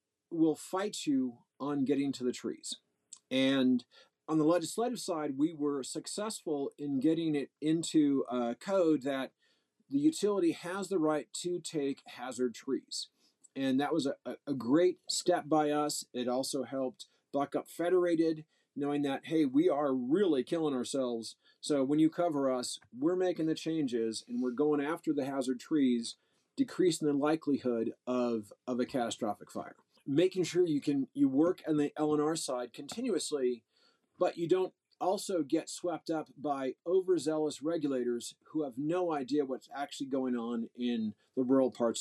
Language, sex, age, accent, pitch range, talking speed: English, male, 40-59, American, 135-180 Hz, 160 wpm